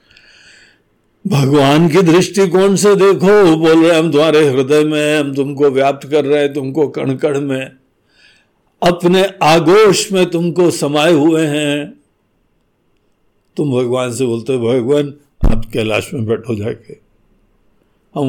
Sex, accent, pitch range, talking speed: male, native, 135-205 Hz, 125 wpm